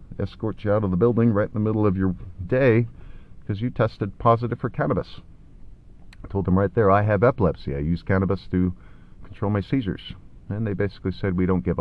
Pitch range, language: 90-115 Hz, English